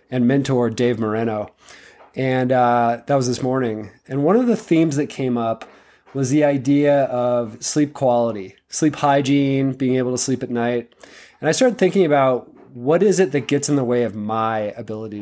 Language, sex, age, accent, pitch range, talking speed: English, male, 20-39, American, 120-150 Hz, 190 wpm